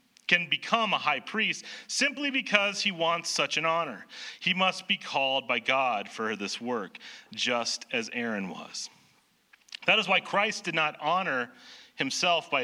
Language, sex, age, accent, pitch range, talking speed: English, male, 40-59, American, 155-220 Hz, 160 wpm